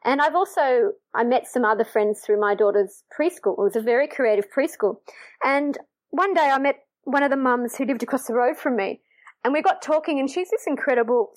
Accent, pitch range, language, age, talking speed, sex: Australian, 215-300 Hz, English, 30-49, 220 wpm, female